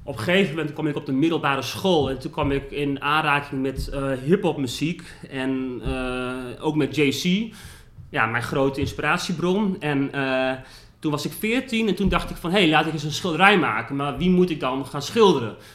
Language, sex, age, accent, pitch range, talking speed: Dutch, male, 30-49, Dutch, 135-165 Hz, 210 wpm